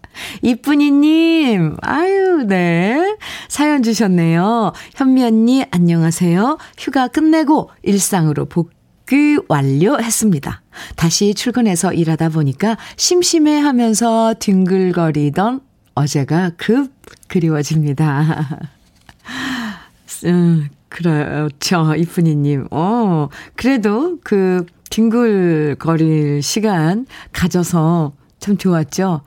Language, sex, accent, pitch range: Korean, female, native, 155-235 Hz